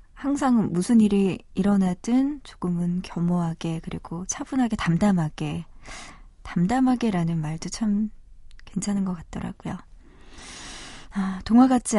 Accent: native